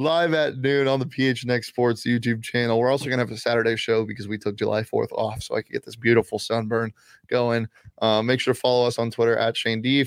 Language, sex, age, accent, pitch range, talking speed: English, male, 20-39, American, 110-120 Hz, 255 wpm